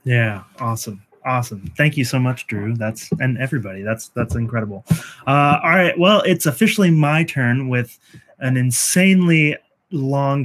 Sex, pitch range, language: male, 125-155 Hz, English